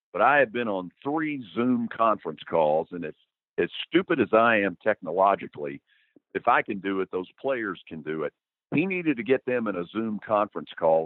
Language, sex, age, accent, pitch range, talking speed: English, male, 50-69, American, 95-130 Hz, 200 wpm